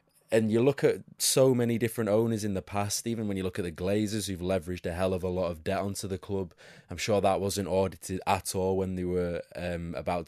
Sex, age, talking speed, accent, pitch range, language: male, 20-39, 245 wpm, British, 90-100 Hz, English